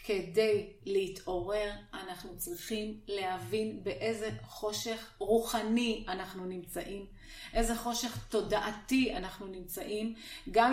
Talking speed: 90 wpm